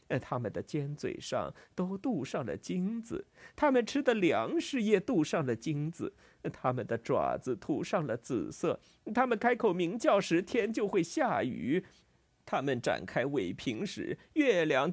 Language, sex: Chinese, male